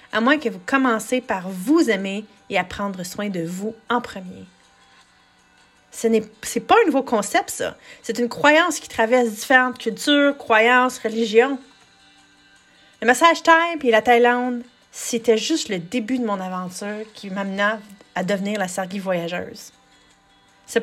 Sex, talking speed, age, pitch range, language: female, 155 wpm, 30-49, 195-250 Hz, French